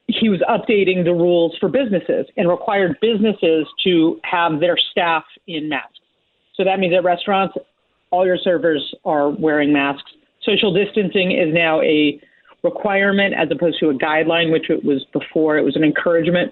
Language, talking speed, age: English, 165 wpm, 40-59